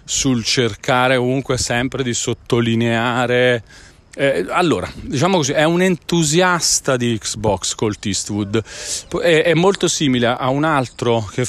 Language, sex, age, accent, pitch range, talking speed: Italian, male, 30-49, native, 115-155 Hz, 130 wpm